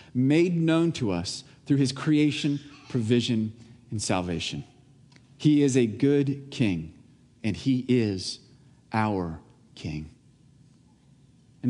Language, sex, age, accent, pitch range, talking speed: English, male, 40-59, American, 120-150 Hz, 110 wpm